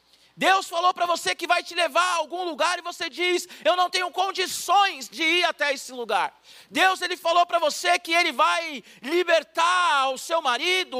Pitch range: 250-340 Hz